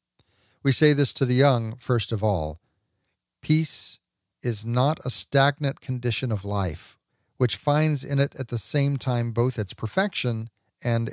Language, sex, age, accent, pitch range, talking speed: English, male, 40-59, American, 115-160 Hz, 155 wpm